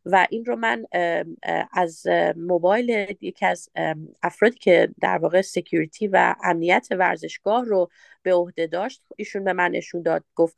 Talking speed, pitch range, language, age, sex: 145 wpm, 175-210 Hz, Persian, 30-49, female